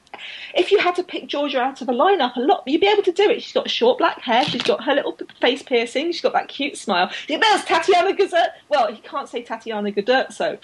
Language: English